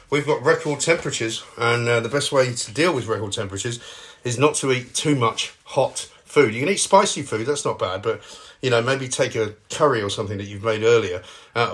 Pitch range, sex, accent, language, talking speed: 110-145 Hz, male, British, English, 225 wpm